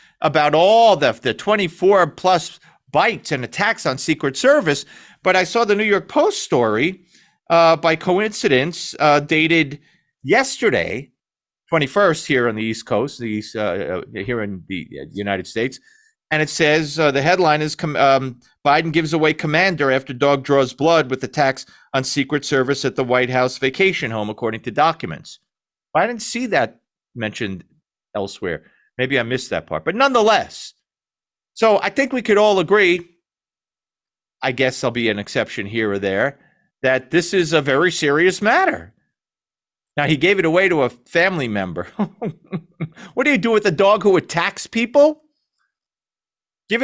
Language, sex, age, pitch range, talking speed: English, male, 40-59, 135-215 Hz, 160 wpm